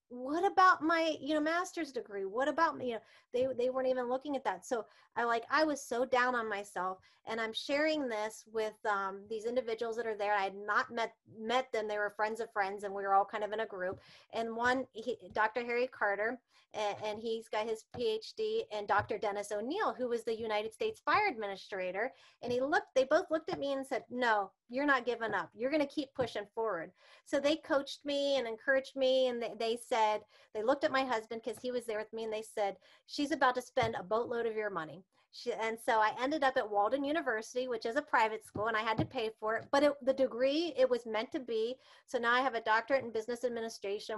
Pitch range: 220-280 Hz